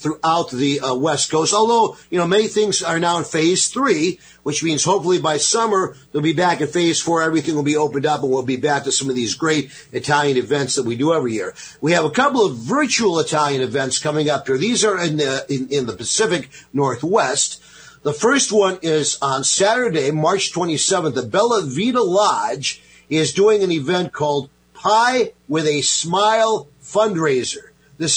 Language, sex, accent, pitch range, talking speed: English, male, American, 145-200 Hz, 190 wpm